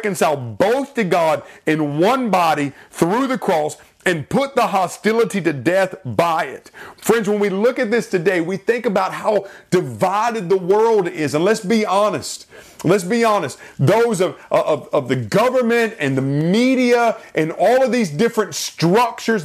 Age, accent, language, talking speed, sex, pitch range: 40-59, American, English, 165 wpm, male, 180-235 Hz